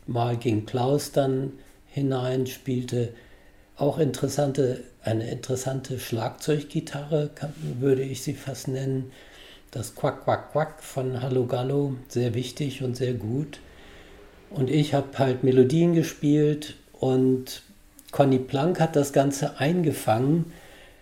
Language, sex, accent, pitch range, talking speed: German, male, German, 120-145 Hz, 115 wpm